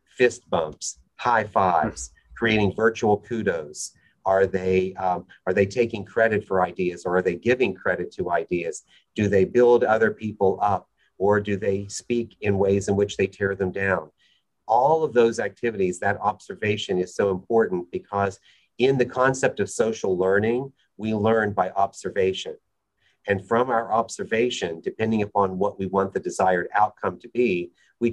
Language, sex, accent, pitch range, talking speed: English, male, American, 95-120 Hz, 160 wpm